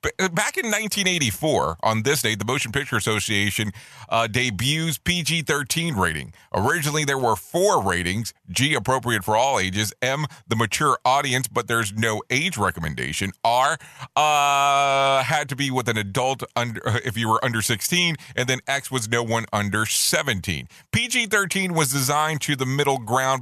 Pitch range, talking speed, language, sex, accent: 110-140 Hz, 160 wpm, English, male, American